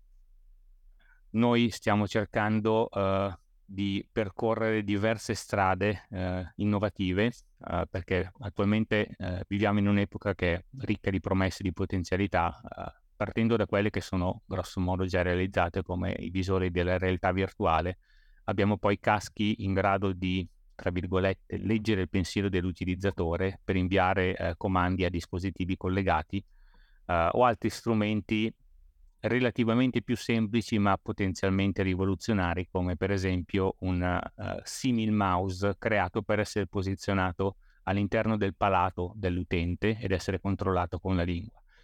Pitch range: 90-105 Hz